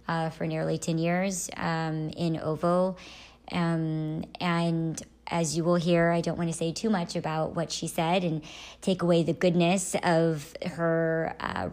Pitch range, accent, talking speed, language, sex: 155-175 Hz, American, 170 wpm, English, male